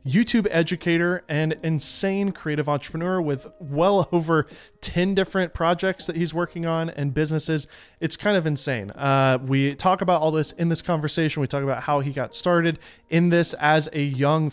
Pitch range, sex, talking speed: 135-170 Hz, male, 180 wpm